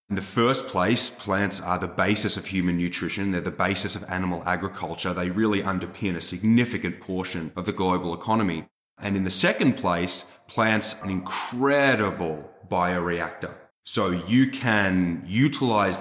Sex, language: male, English